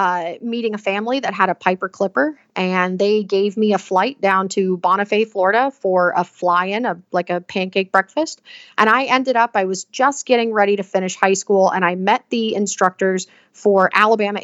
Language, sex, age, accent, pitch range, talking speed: English, female, 30-49, American, 190-225 Hz, 190 wpm